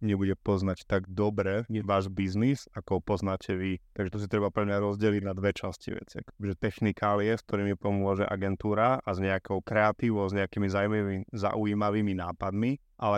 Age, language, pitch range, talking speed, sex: 30-49, Slovak, 100-115 Hz, 165 wpm, male